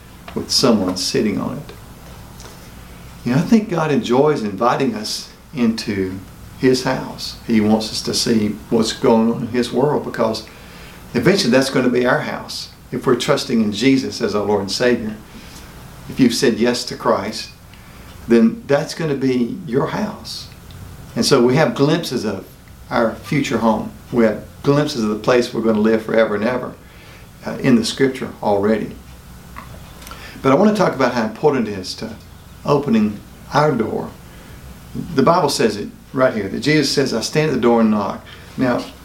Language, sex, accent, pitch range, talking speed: English, male, American, 105-135 Hz, 180 wpm